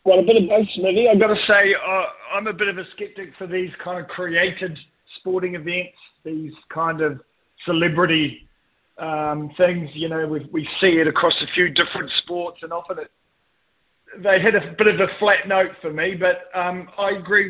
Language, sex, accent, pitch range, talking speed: English, male, Australian, 160-190 Hz, 200 wpm